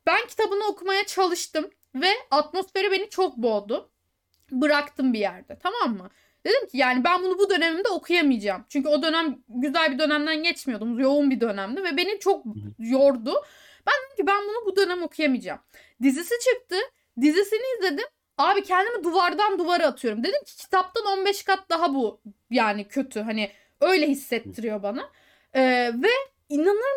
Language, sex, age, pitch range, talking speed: Turkish, female, 10-29, 255-370 Hz, 155 wpm